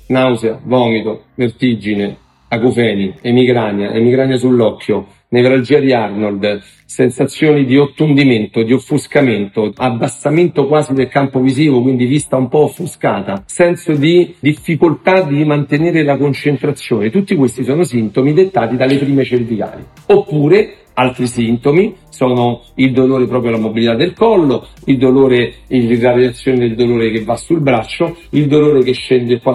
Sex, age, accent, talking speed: male, 50-69, native, 135 wpm